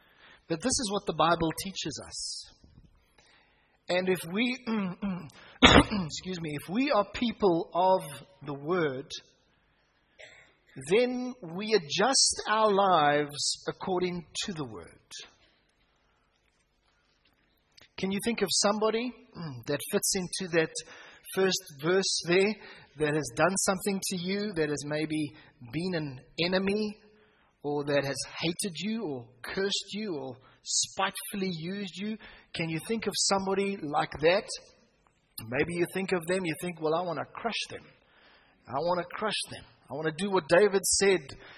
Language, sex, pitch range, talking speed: English, male, 155-200 Hz, 145 wpm